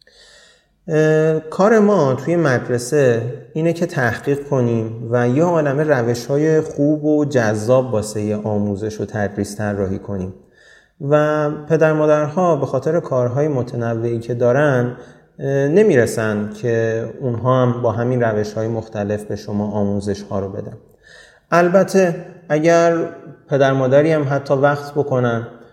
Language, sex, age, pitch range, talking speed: Persian, male, 30-49, 110-145 Hz, 125 wpm